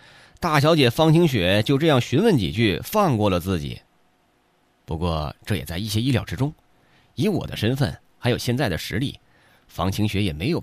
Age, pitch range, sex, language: 30-49, 95-150 Hz, male, Chinese